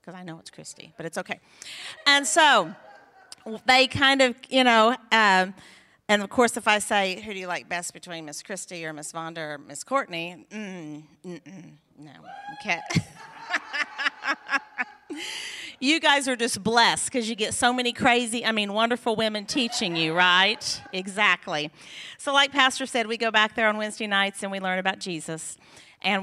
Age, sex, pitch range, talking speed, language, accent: 40-59, female, 180-235 Hz, 170 wpm, English, American